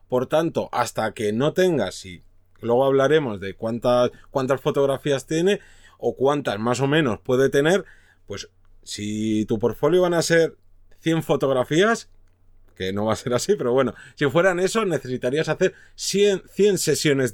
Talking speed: 160 wpm